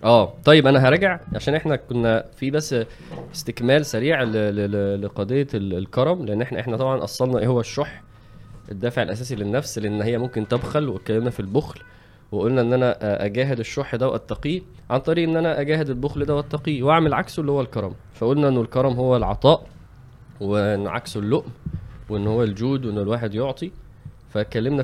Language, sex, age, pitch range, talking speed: Arabic, male, 20-39, 105-135 Hz, 165 wpm